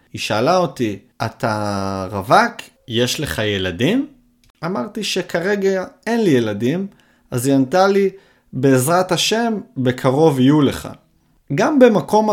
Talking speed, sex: 115 wpm, male